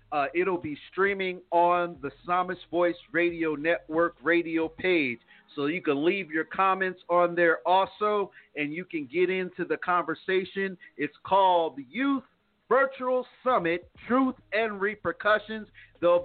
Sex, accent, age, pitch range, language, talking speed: male, American, 50-69, 160-210 Hz, English, 135 wpm